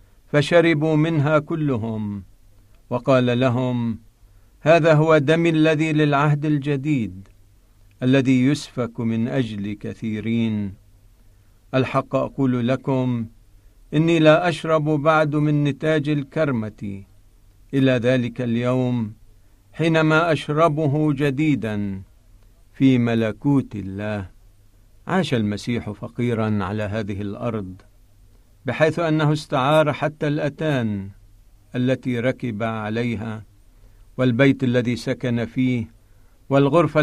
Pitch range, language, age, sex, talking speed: 105-140 Hz, Arabic, 50-69, male, 90 wpm